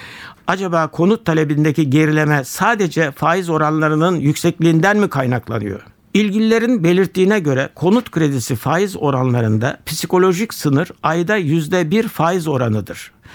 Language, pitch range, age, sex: Turkish, 140-190 Hz, 60-79, male